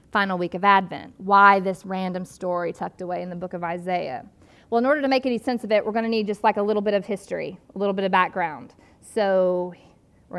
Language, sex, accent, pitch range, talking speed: English, female, American, 185-235 Hz, 235 wpm